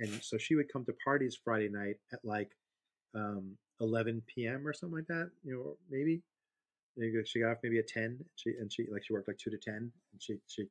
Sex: male